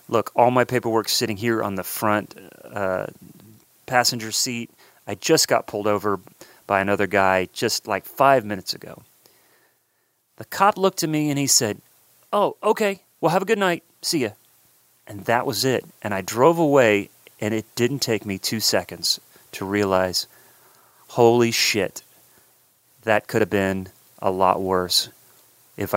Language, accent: English, American